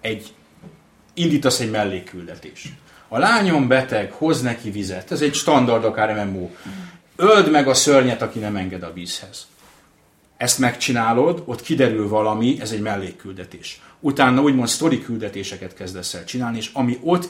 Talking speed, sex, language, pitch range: 145 wpm, male, Hungarian, 105-135 Hz